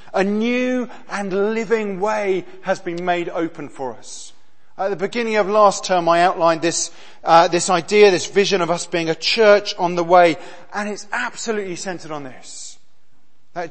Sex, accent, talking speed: male, British, 175 wpm